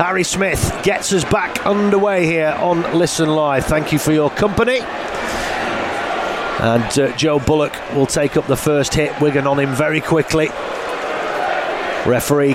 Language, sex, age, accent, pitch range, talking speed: English, male, 30-49, British, 140-170 Hz, 150 wpm